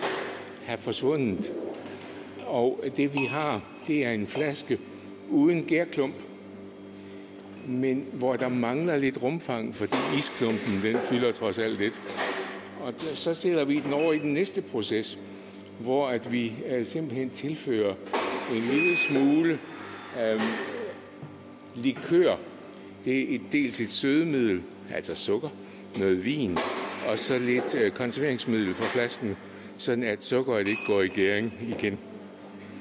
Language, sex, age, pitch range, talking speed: Danish, male, 60-79, 115-150 Hz, 125 wpm